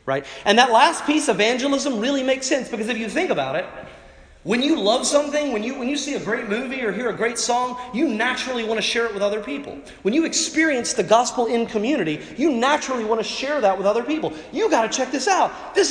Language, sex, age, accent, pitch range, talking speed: English, male, 30-49, American, 210-275 Hz, 240 wpm